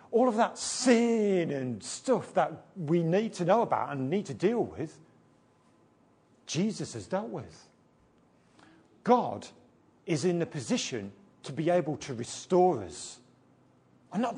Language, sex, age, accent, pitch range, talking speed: English, male, 50-69, British, 140-205 Hz, 140 wpm